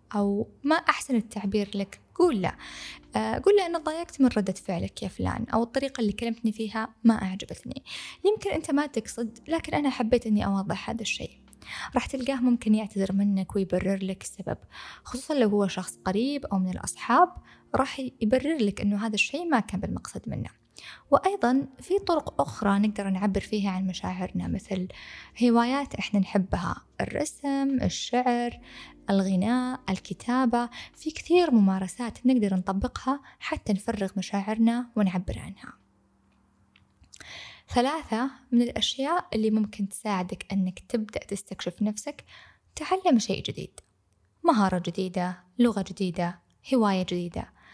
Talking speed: 130 wpm